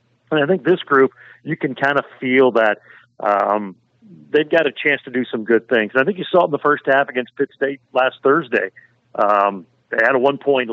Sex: male